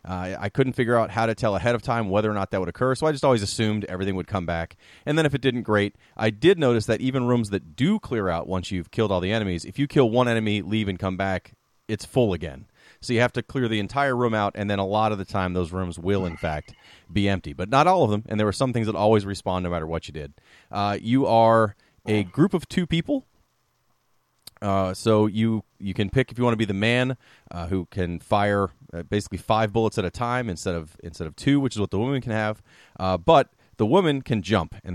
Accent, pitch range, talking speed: American, 95-125 Hz, 260 wpm